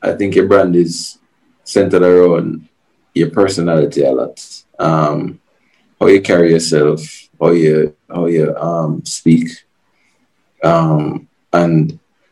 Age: 20-39